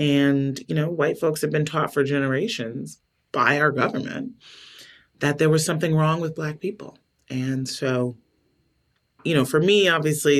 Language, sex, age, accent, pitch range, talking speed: English, male, 30-49, American, 125-150 Hz, 160 wpm